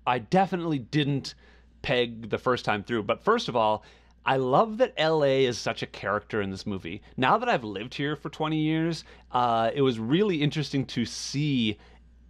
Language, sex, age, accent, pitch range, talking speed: English, male, 30-49, American, 110-150 Hz, 185 wpm